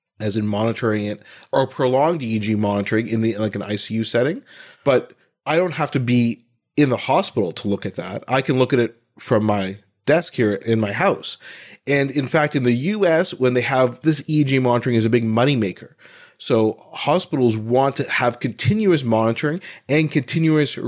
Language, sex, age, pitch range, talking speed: English, male, 30-49, 110-135 Hz, 185 wpm